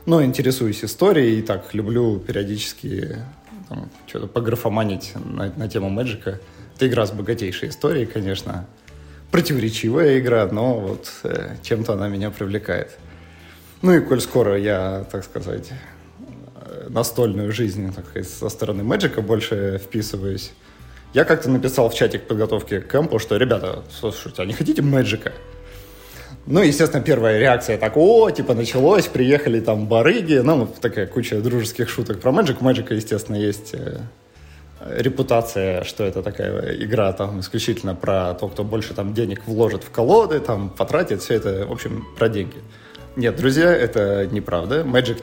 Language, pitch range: Russian, 100-125 Hz